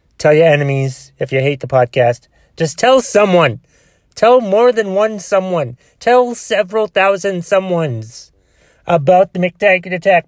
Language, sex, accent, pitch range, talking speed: English, male, American, 115-165 Hz, 140 wpm